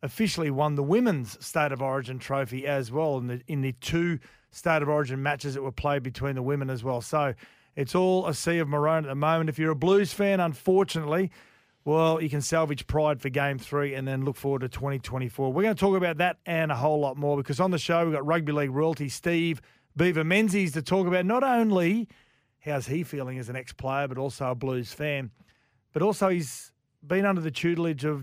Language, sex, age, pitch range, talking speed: English, male, 40-59, 135-165 Hz, 220 wpm